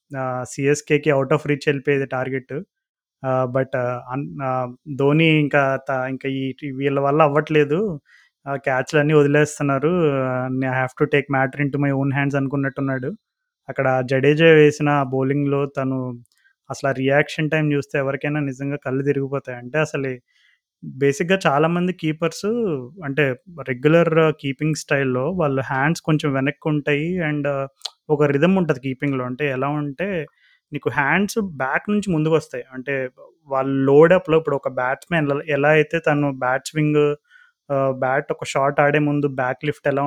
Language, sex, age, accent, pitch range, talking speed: Telugu, male, 20-39, native, 135-160 Hz, 130 wpm